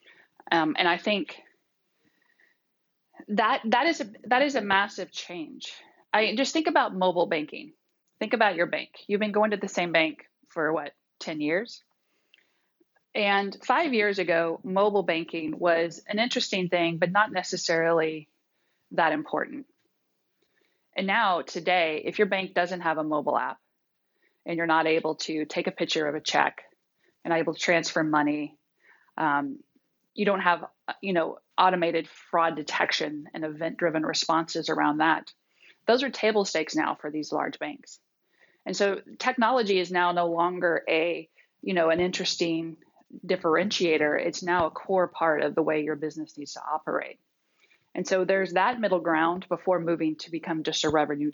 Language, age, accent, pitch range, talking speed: English, 30-49, American, 160-210 Hz, 160 wpm